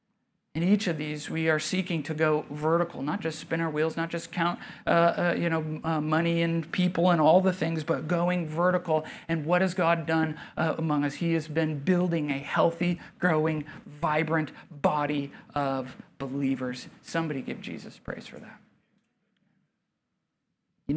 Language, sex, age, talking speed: English, male, 40-59, 170 wpm